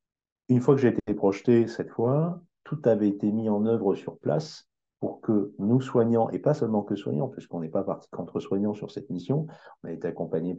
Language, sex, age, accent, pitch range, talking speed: French, male, 50-69, French, 85-115 Hz, 210 wpm